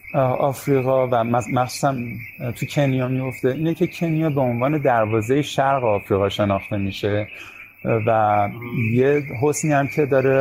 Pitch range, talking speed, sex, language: 110-135 Hz, 125 wpm, male, Persian